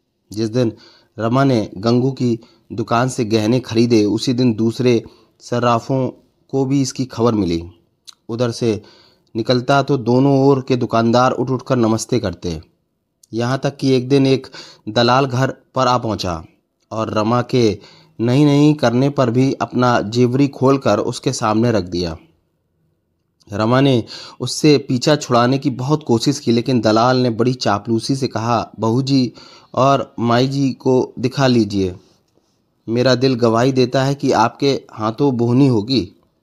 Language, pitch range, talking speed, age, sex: Hindi, 115-135 Hz, 145 wpm, 30-49, male